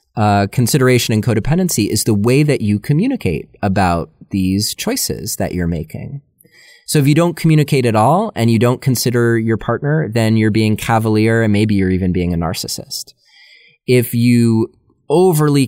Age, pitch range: 30-49, 95-130 Hz